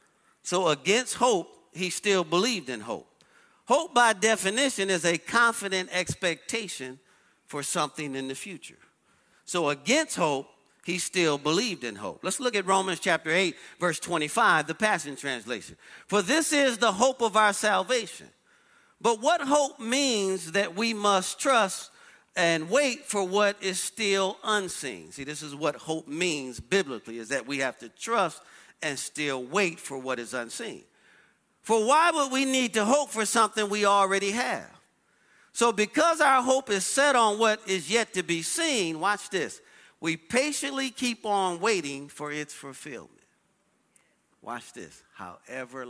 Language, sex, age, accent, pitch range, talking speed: English, male, 40-59, American, 155-225 Hz, 155 wpm